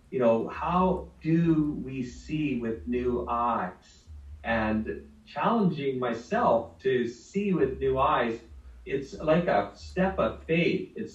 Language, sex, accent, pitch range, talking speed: English, male, American, 120-180 Hz, 130 wpm